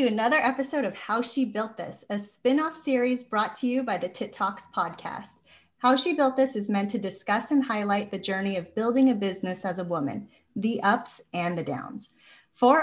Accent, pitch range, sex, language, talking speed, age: American, 200-265 Hz, female, English, 200 wpm, 30-49